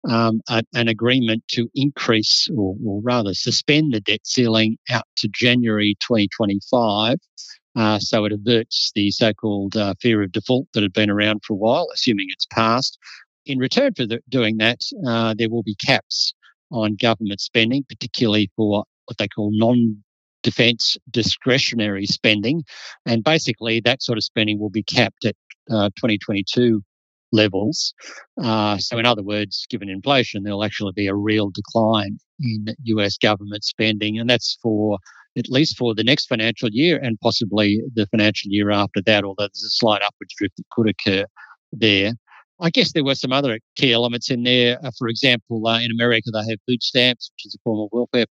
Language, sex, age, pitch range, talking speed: English, male, 50-69, 105-120 Hz, 175 wpm